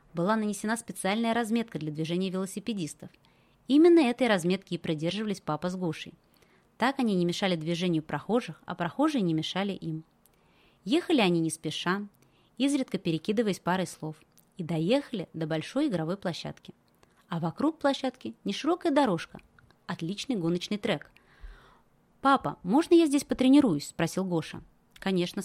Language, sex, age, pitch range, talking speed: Russian, female, 20-39, 170-245 Hz, 135 wpm